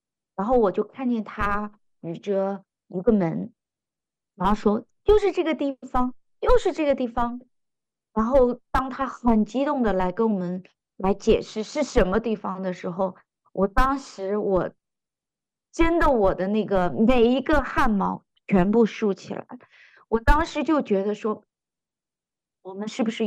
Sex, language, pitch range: female, Chinese, 195-255 Hz